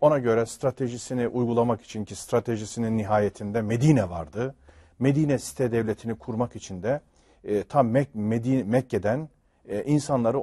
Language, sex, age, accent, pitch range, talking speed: Turkish, male, 40-59, native, 105-140 Hz, 110 wpm